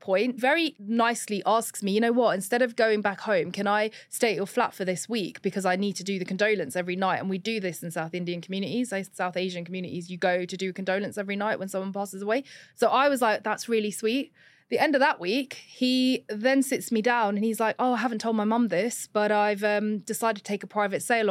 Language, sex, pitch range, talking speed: English, female, 200-245 Hz, 250 wpm